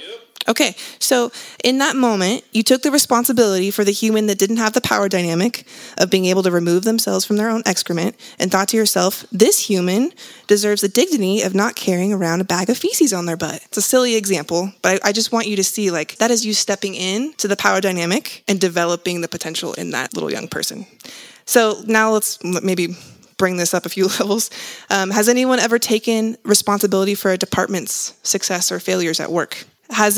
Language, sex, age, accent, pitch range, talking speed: English, female, 20-39, American, 180-220 Hz, 205 wpm